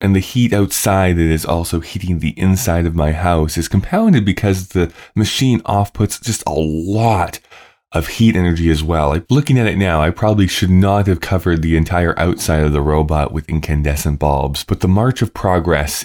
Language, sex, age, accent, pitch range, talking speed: English, male, 20-39, American, 80-110 Hz, 195 wpm